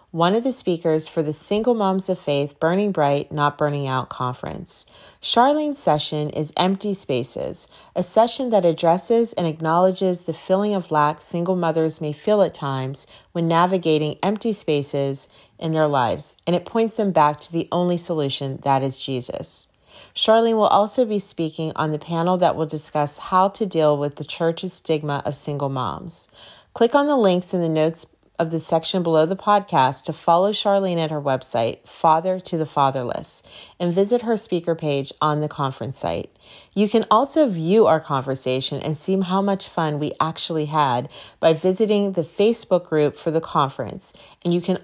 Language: English